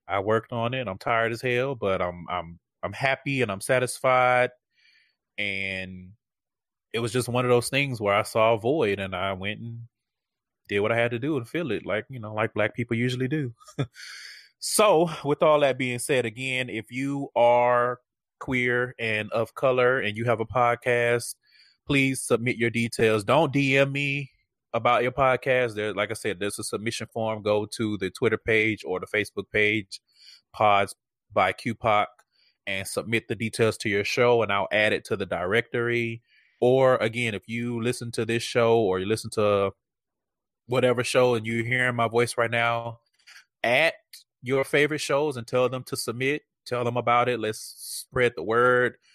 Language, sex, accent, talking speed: English, male, American, 185 wpm